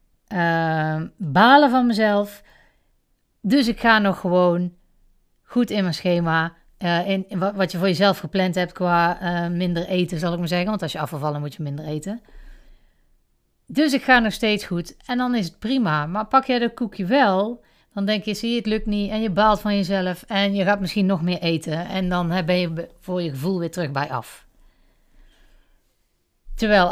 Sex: female